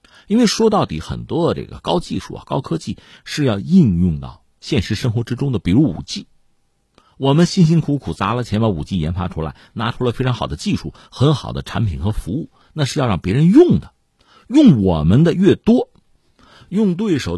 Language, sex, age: Chinese, male, 50-69